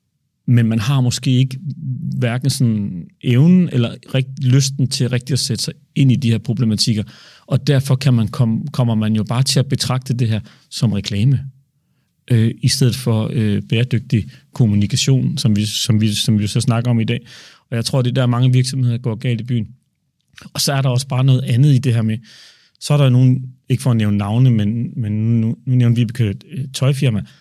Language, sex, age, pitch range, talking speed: Danish, male, 40-59, 115-140 Hz, 210 wpm